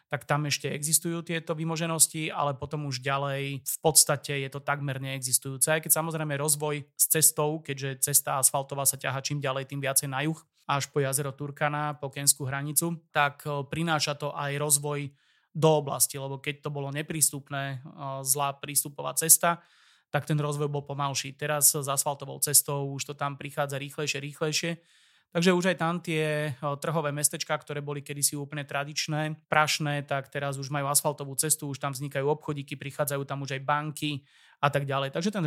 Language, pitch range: Slovak, 140-150 Hz